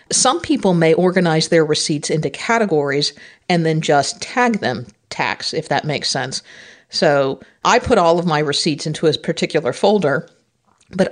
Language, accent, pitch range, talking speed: English, American, 150-195 Hz, 160 wpm